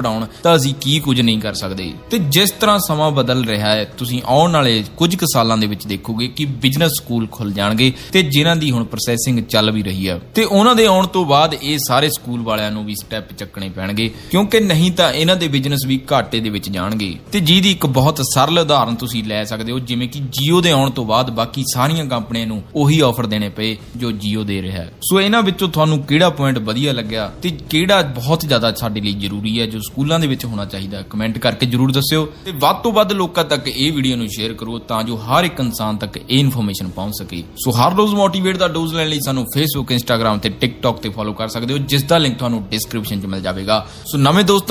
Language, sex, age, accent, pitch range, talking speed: Hindi, male, 20-39, native, 110-155 Hz, 70 wpm